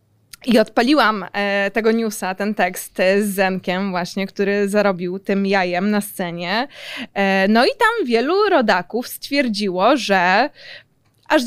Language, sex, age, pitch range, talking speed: Polish, female, 20-39, 220-315 Hz, 120 wpm